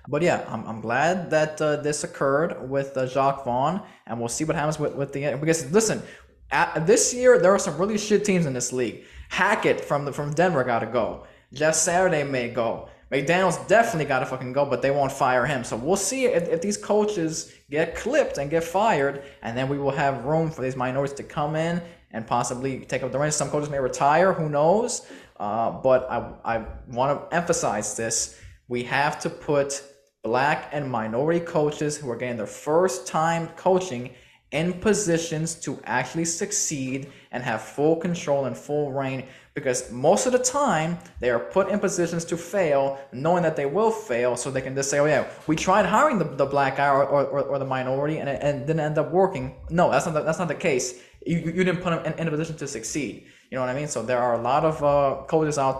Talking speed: 215 wpm